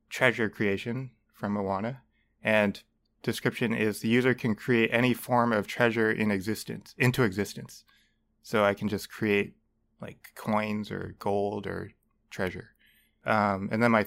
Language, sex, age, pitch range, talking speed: English, male, 20-39, 100-120 Hz, 145 wpm